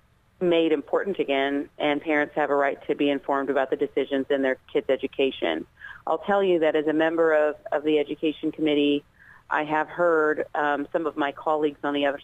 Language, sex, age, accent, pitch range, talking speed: English, female, 40-59, American, 140-160 Hz, 200 wpm